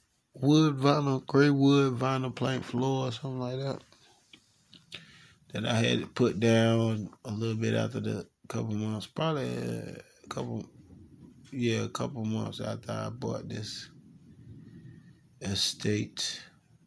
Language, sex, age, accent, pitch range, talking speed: English, male, 20-39, American, 100-125 Hz, 125 wpm